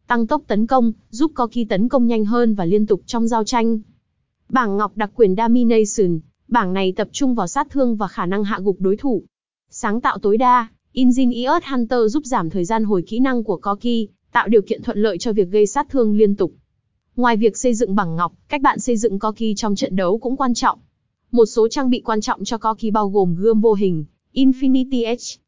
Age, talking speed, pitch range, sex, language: 20-39, 225 wpm, 210-255 Hz, female, Vietnamese